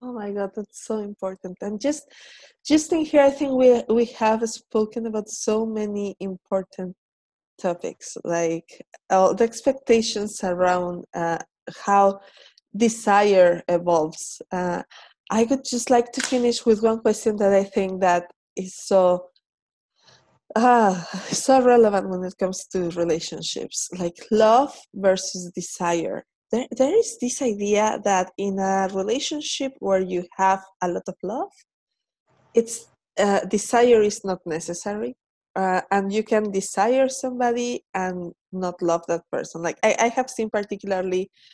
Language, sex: English, female